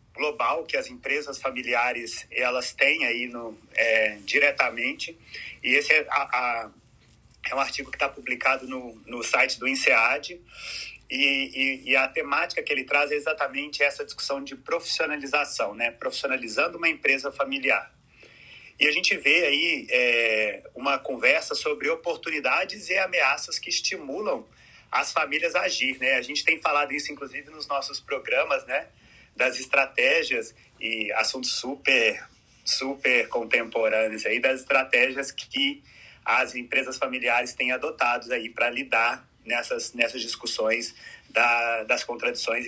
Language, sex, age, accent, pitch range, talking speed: Portuguese, male, 30-49, Brazilian, 130-190 Hz, 140 wpm